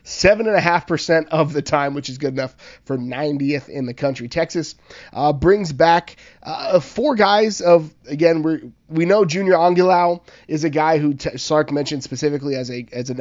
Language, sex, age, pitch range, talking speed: English, male, 20-39, 130-155 Hz, 190 wpm